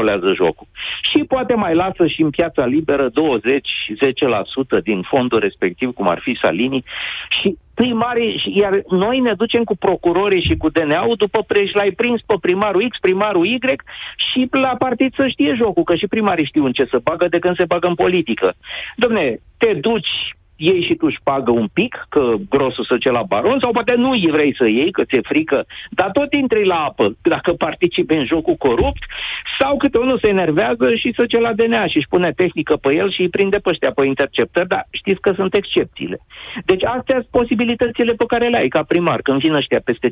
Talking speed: 205 wpm